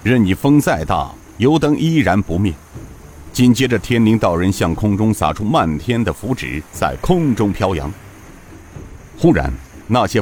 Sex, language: male, Chinese